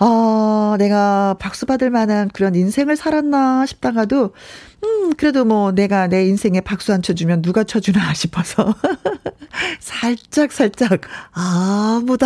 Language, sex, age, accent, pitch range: Korean, female, 40-59, native, 185-260 Hz